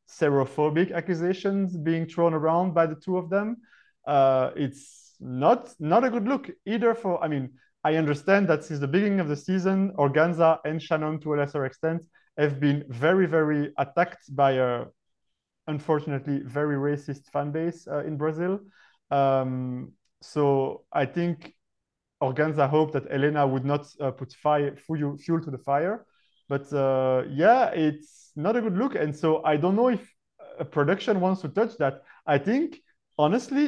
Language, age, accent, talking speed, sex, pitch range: English, 30-49, French, 165 wpm, male, 145-190 Hz